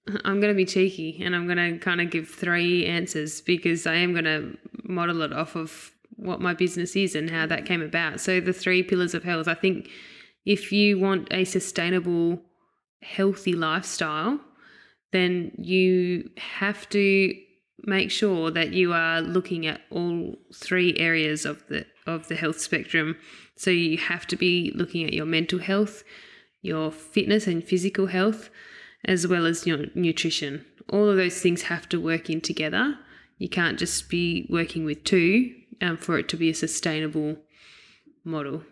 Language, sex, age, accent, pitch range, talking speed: English, female, 10-29, Australian, 165-190 Hz, 170 wpm